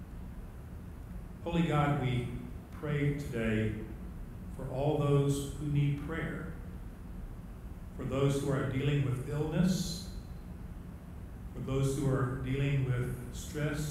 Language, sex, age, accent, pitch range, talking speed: English, male, 50-69, American, 105-150 Hz, 110 wpm